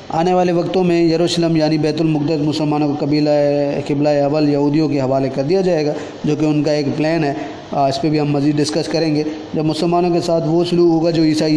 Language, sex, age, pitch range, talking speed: Urdu, male, 20-39, 150-175 Hz, 230 wpm